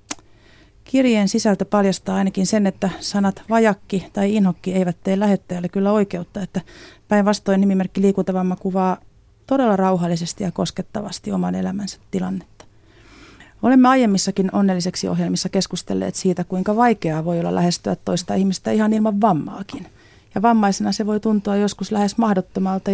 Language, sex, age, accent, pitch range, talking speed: Finnish, female, 30-49, native, 175-205 Hz, 135 wpm